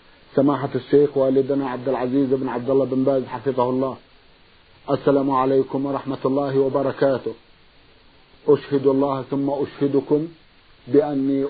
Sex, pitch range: male, 135-145 Hz